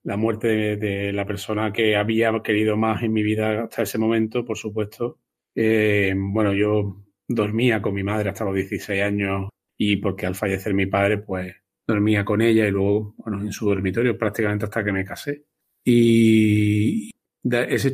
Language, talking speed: Spanish, 170 wpm